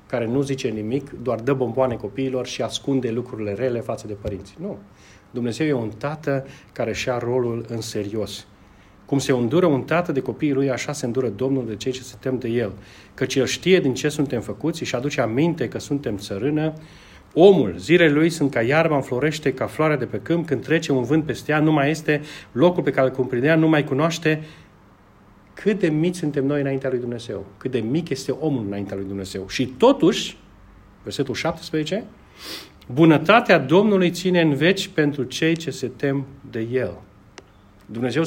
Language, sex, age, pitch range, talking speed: Romanian, male, 40-59, 115-155 Hz, 185 wpm